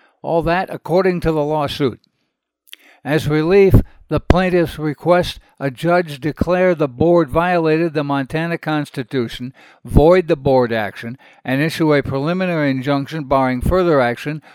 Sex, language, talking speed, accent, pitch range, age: male, English, 130 wpm, American, 135-165 Hz, 60-79